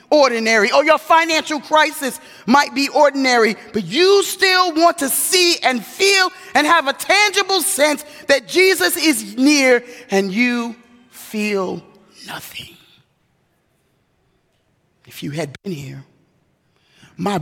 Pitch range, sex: 200-270 Hz, male